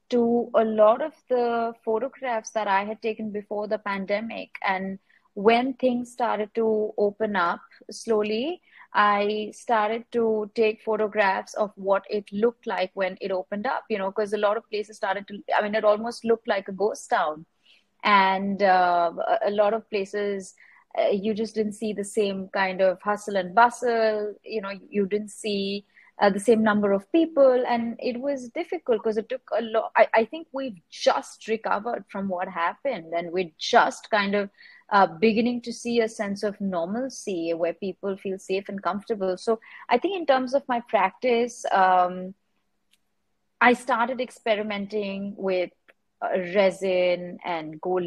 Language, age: English, 30-49